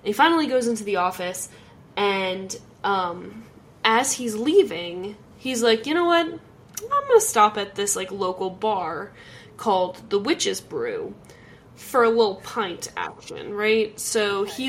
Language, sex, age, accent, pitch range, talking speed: English, female, 10-29, American, 205-245 Hz, 145 wpm